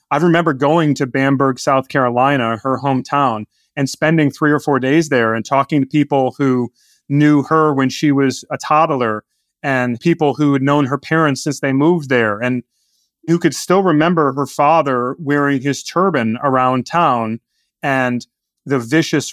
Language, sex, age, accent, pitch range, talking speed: English, male, 30-49, American, 130-160 Hz, 170 wpm